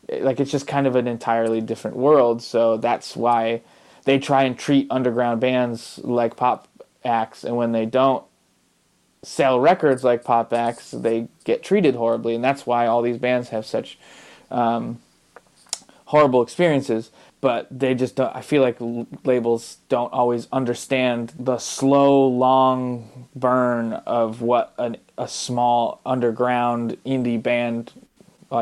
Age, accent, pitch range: 20-39, American, 115-130 Hz